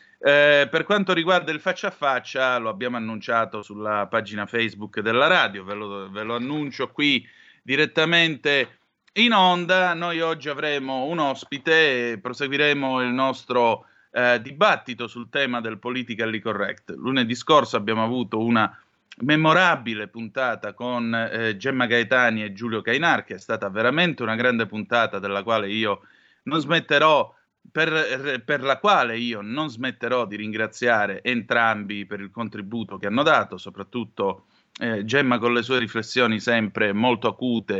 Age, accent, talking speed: 30-49, native, 150 wpm